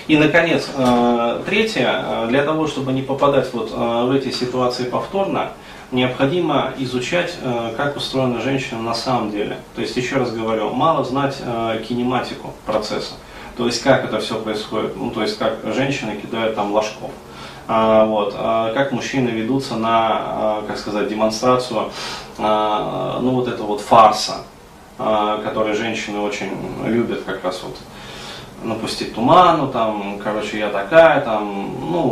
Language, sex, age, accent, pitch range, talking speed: Russian, male, 20-39, native, 110-130 Hz, 135 wpm